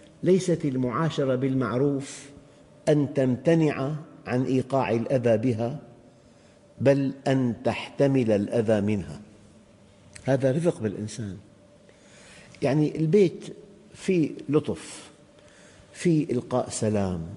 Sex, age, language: male, 50-69, Arabic